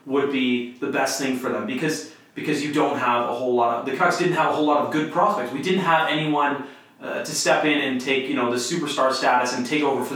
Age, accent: 30-49, American